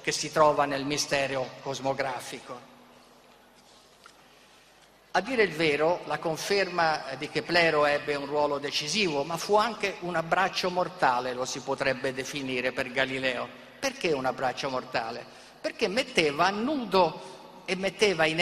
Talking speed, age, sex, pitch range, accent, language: 135 wpm, 50-69, male, 150-195 Hz, native, Italian